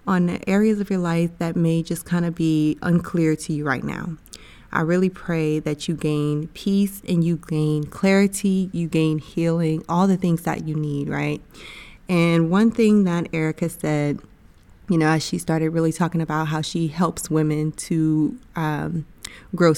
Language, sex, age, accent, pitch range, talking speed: English, female, 20-39, American, 155-180 Hz, 180 wpm